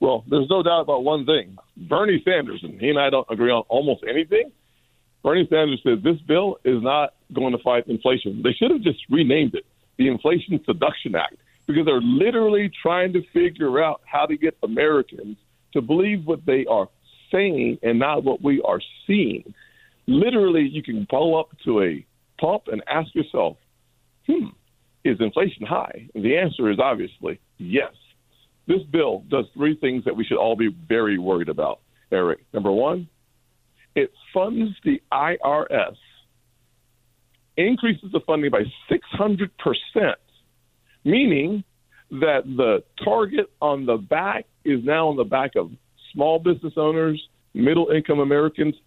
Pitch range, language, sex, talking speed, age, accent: 120-180 Hz, English, male, 155 wpm, 50-69, American